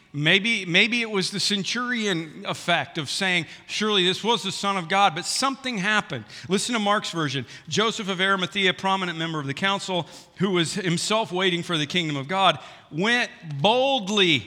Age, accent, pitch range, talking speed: 50-69, American, 165-230 Hz, 175 wpm